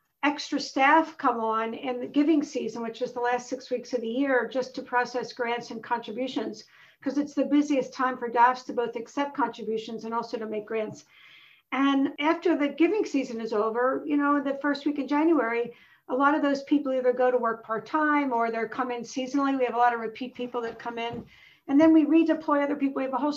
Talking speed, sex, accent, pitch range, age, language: 225 wpm, female, American, 235-275 Hz, 50-69, English